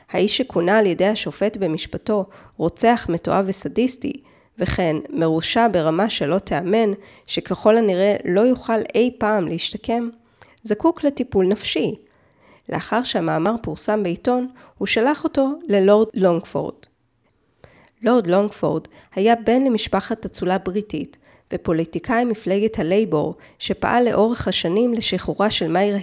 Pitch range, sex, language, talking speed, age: 180-230 Hz, female, Hebrew, 115 wpm, 20-39